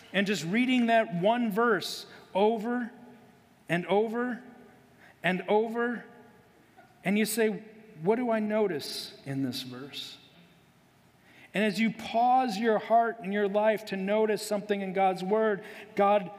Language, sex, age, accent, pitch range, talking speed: English, male, 40-59, American, 185-215 Hz, 135 wpm